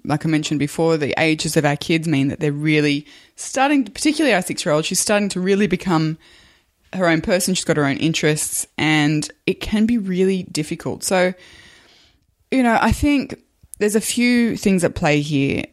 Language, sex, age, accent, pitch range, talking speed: English, female, 20-39, Australian, 145-170 Hz, 185 wpm